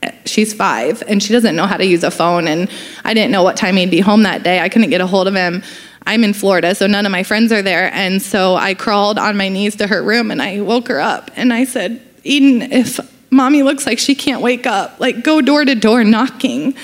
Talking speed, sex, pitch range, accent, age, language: 255 wpm, female, 210-255 Hz, American, 20-39, English